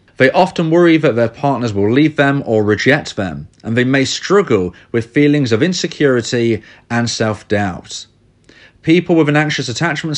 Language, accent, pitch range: English, British, 110-145 Hz